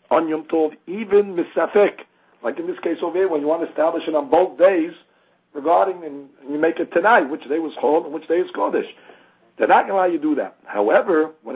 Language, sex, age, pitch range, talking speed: English, male, 60-79, 155-220 Hz, 235 wpm